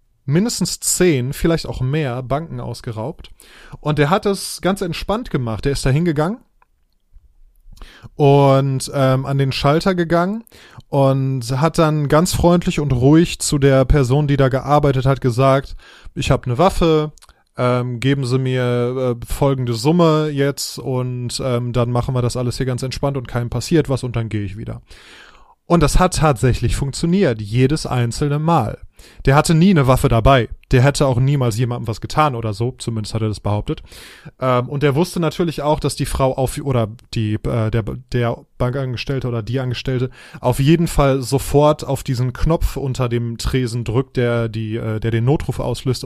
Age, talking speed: 20-39, 175 wpm